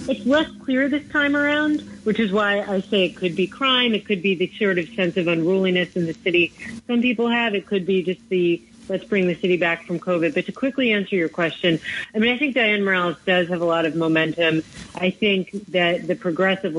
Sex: female